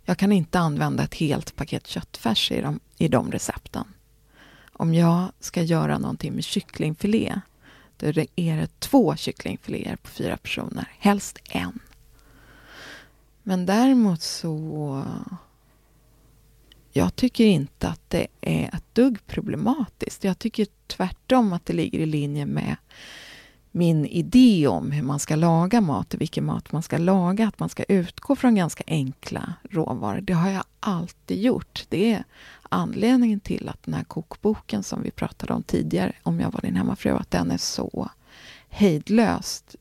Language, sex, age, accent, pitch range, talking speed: Swedish, female, 30-49, native, 160-215 Hz, 155 wpm